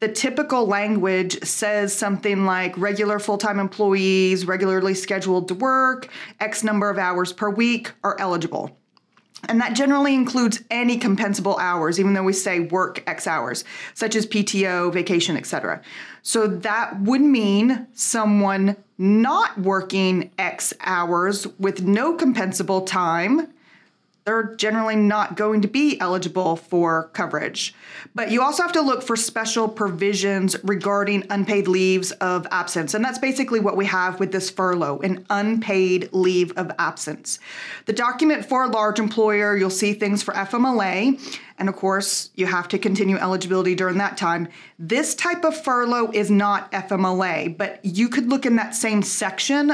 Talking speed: 155 wpm